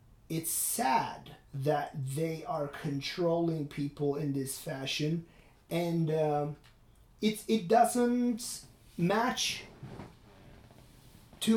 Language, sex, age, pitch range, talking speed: English, male, 30-49, 145-210 Hz, 95 wpm